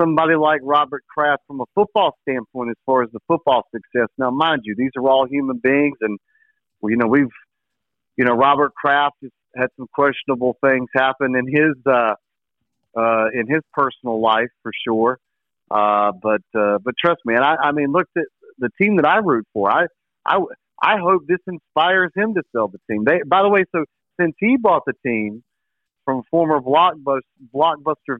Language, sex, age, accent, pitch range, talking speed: English, male, 40-59, American, 115-155 Hz, 190 wpm